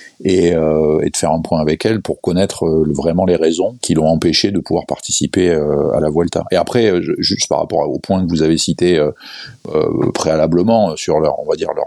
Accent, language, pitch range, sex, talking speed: French, French, 80-95 Hz, male, 205 wpm